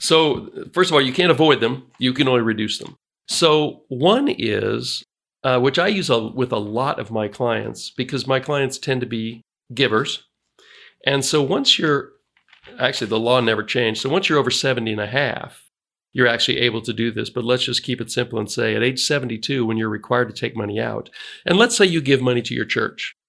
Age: 40-59